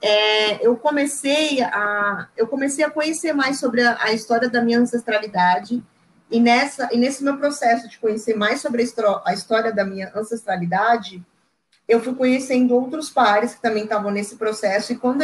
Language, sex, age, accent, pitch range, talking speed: Portuguese, female, 20-39, Brazilian, 215-255 Hz, 155 wpm